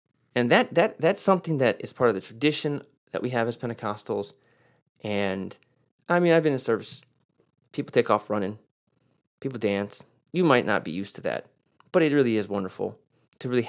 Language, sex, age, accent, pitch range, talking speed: English, male, 30-49, American, 110-140 Hz, 190 wpm